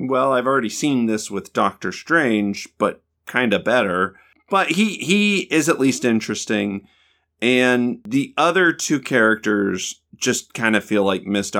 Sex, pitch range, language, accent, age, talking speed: male, 100-145 Hz, English, American, 30-49, 155 wpm